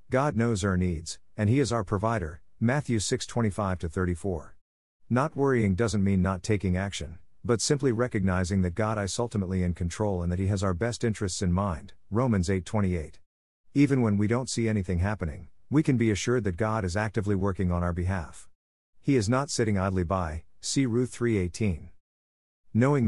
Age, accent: 50-69, American